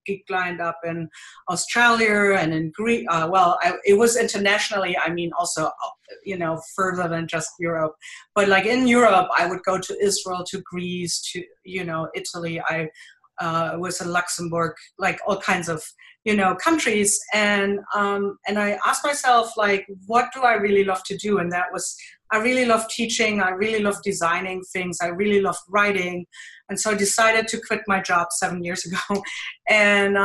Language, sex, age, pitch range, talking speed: English, female, 40-59, 180-210 Hz, 180 wpm